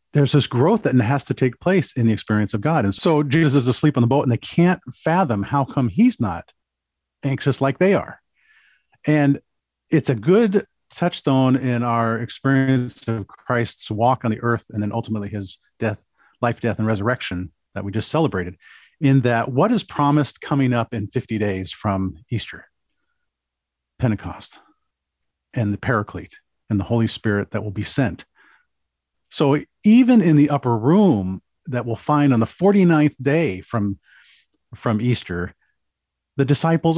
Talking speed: 165 wpm